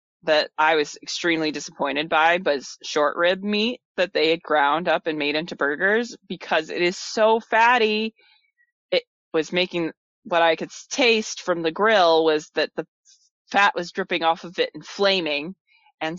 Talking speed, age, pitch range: 170 wpm, 20-39, 155-215 Hz